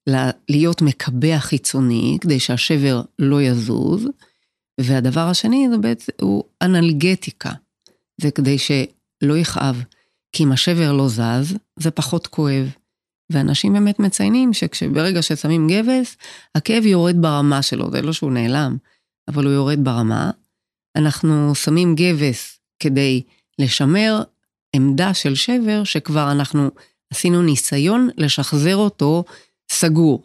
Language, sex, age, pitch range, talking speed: Hebrew, female, 40-59, 135-175 Hz, 115 wpm